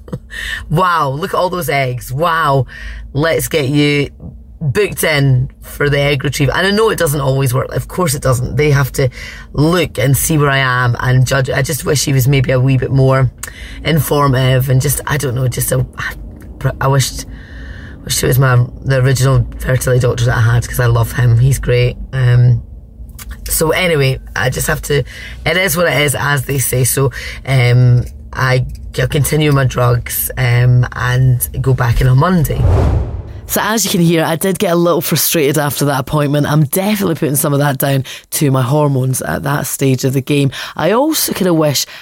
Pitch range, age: 130-160 Hz, 20-39